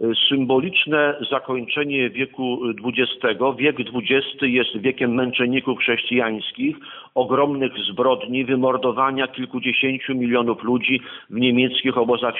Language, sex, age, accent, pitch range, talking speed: Polish, male, 50-69, native, 125-135 Hz, 90 wpm